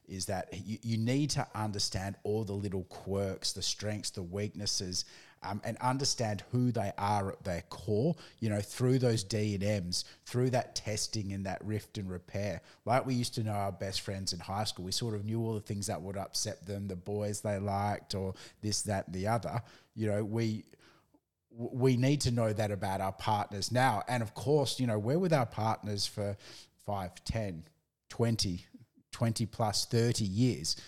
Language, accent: English, Australian